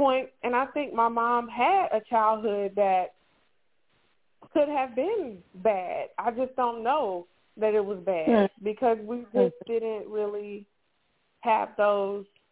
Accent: American